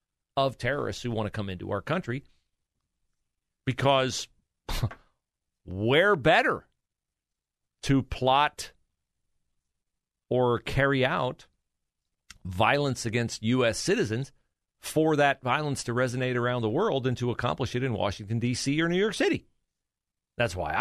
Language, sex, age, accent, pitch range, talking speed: English, male, 40-59, American, 85-135 Hz, 120 wpm